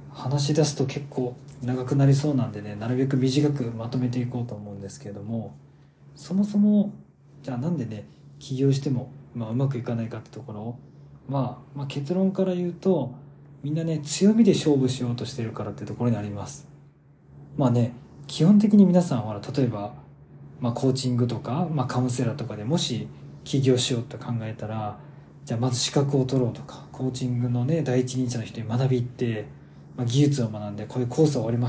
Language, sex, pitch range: Japanese, male, 120-150 Hz